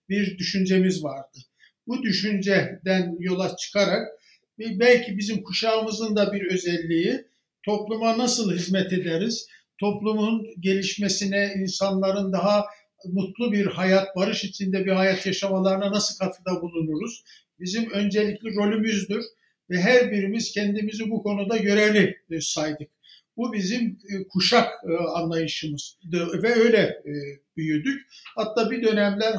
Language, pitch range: Turkish, 185-215 Hz